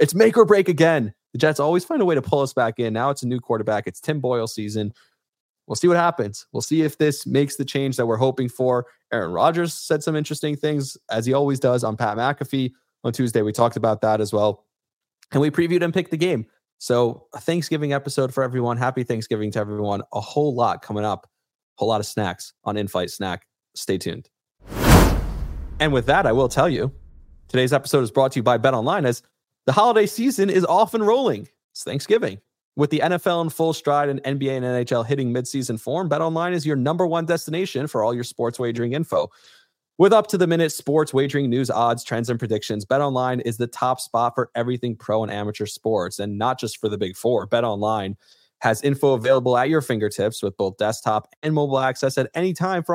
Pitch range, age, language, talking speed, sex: 115-155 Hz, 20-39, English, 210 wpm, male